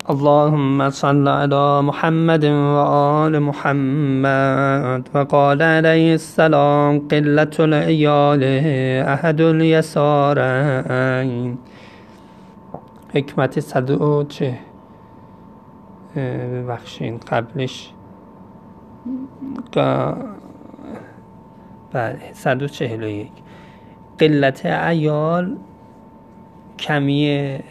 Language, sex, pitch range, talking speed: Persian, male, 130-160 Hz, 55 wpm